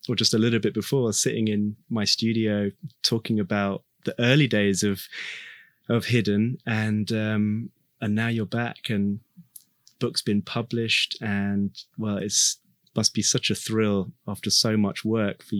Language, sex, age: English, male, 20-39